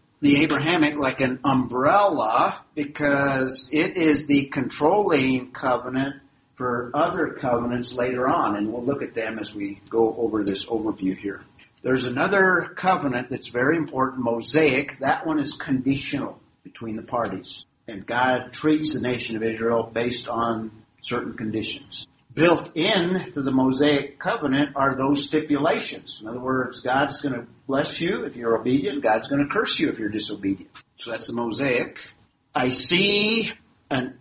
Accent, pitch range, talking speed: American, 125-150 Hz, 155 wpm